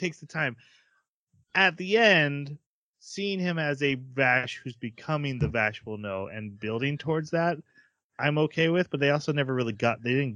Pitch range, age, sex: 110-150 Hz, 30-49, male